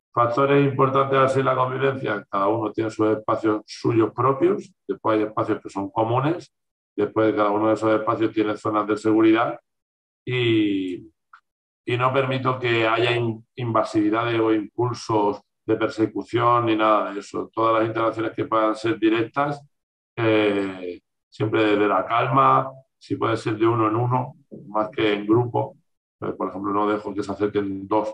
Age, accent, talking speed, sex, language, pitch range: 50-69, Spanish, 160 wpm, male, Spanish, 100-120 Hz